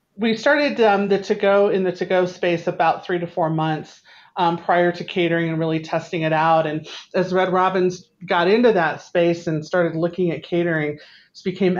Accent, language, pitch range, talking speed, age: American, English, 160-180 Hz, 205 wpm, 40-59